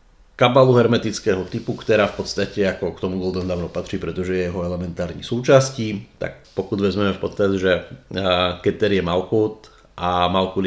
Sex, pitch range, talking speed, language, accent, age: male, 95-120 Hz, 150 wpm, Czech, native, 30-49